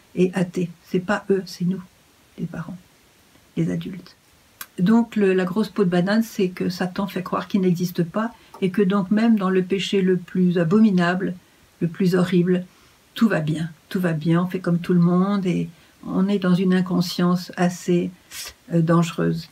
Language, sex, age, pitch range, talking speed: French, female, 50-69, 170-195 Hz, 180 wpm